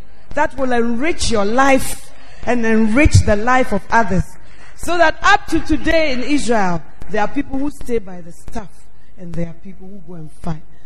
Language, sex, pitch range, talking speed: English, female, 190-275 Hz, 190 wpm